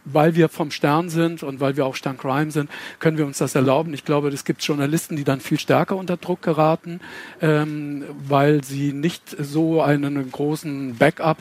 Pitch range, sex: 135-155 Hz, male